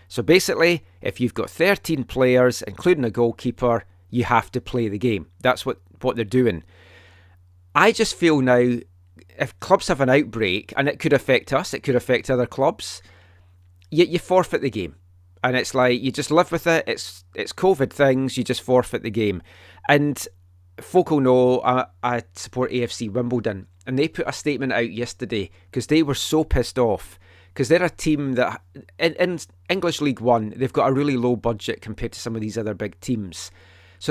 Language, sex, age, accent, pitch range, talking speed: English, male, 30-49, British, 95-135 Hz, 190 wpm